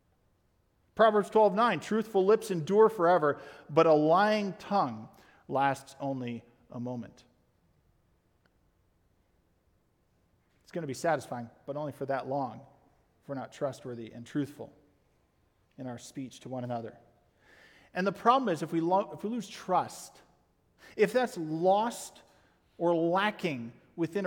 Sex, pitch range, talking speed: male, 130-200 Hz, 130 wpm